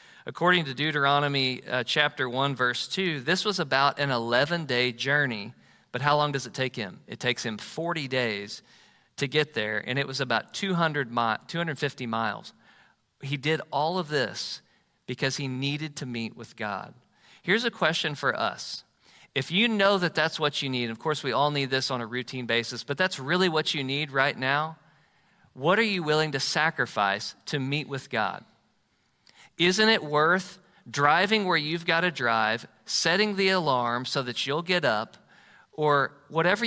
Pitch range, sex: 125-165 Hz, male